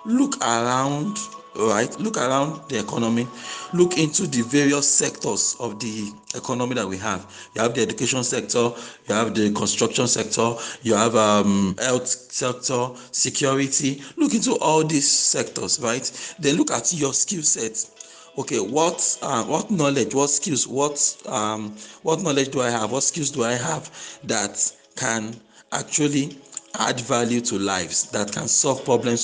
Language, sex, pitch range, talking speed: English, male, 115-140 Hz, 155 wpm